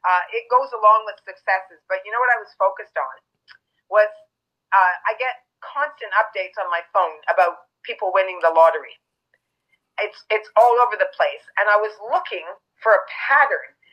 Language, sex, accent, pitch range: English, female, American, 195-250 Hz